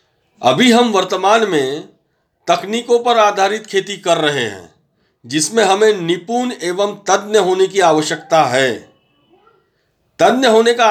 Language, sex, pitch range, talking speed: Hindi, male, 170-230 Hz, 125 wpm